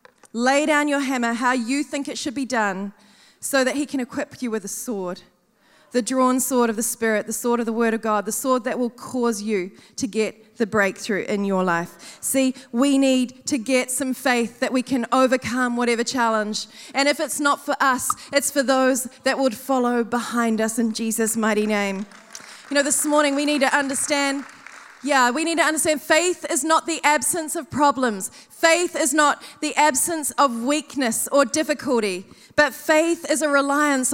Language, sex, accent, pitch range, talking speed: English, female, Australian, 250-330 Hz, 195 wpm